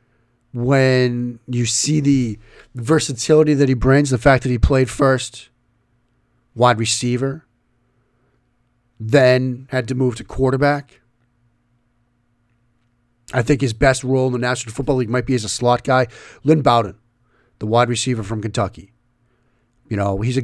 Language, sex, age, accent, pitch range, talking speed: English, male, 40-59, American, 120-135 Hz, 145 wpm